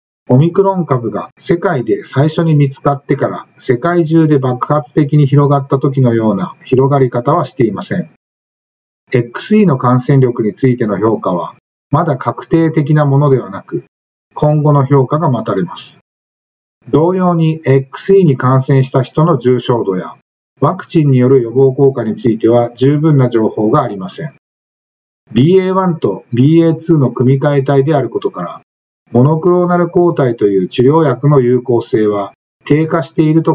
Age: 50-69